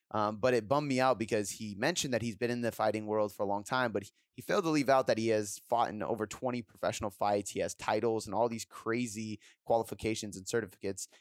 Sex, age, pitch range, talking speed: male, 20-39, 105-130 Hz, 245 wpm